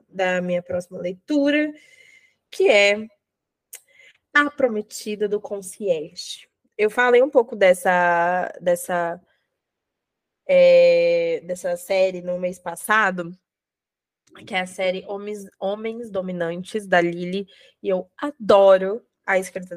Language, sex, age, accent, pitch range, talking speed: Portuguese, female, 20-39, Brazilian, 180-230 Hz, 105 wpm